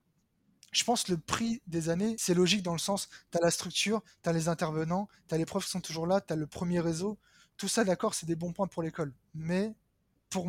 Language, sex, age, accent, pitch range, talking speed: French, male, 20-39, French, 165-195 Hz, 250 wpm